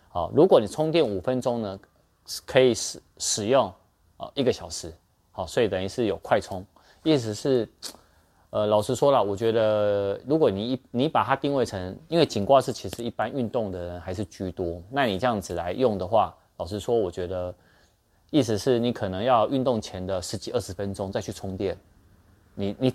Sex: male